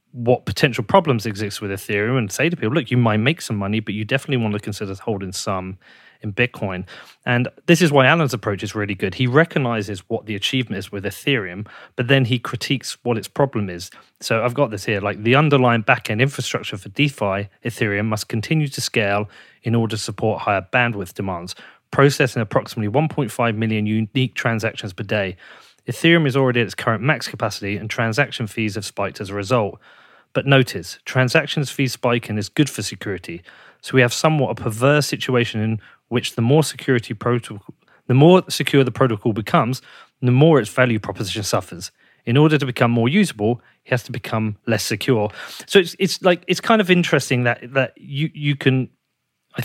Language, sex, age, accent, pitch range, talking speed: English, male, 30-49, British, 110-140 Hz, 195 wpm